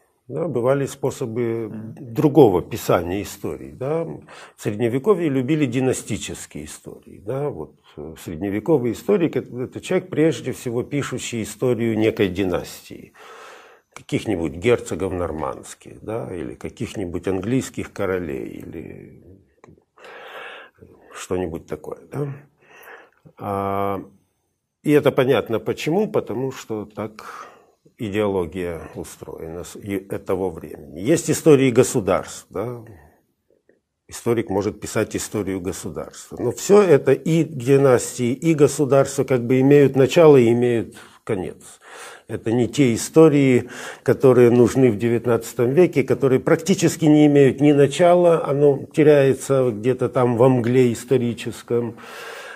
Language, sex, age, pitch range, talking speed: Russian, male, 50-69, 110-145 Hz, 100 wpm